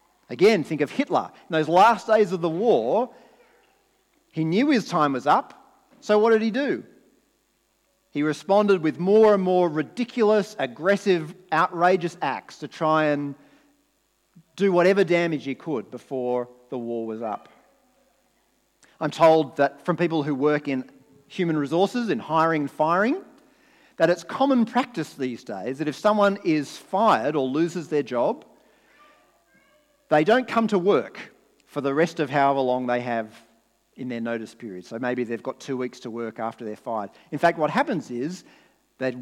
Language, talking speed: English, 165 wpm